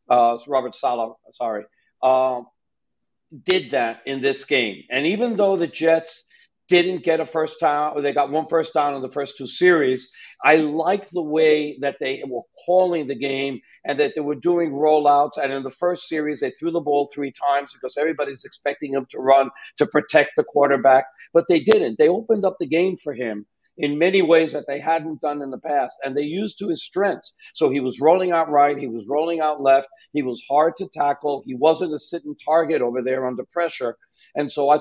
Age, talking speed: 60-79, 210 wpm